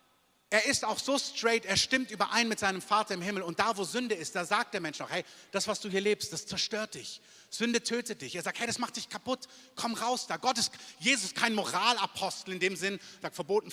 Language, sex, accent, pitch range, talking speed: German, male, German, 180-230 Hz, 245 wpm